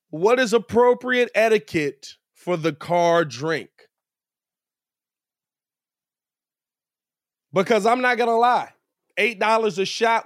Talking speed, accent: 100 wpm, American